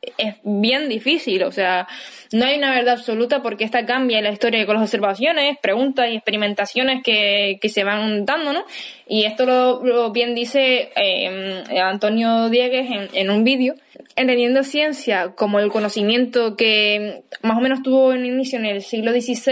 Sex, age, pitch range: female, 10-29, 210-255 Hz